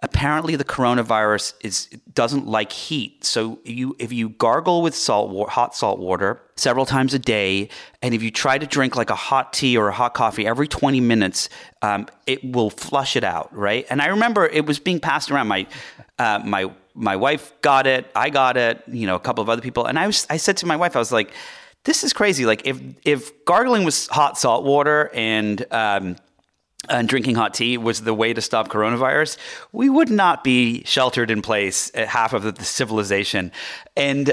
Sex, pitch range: male, 105-140 Hz